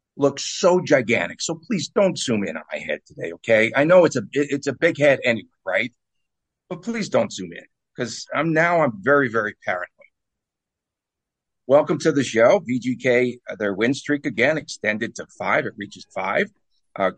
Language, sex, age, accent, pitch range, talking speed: English, male, 50-69, American, 120-150 Hz, 180 wpm